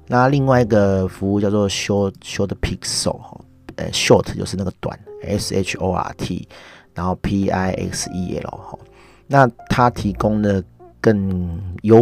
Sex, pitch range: male, 90-110 Hz